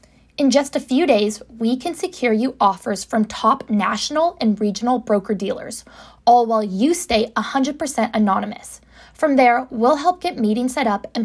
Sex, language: female, English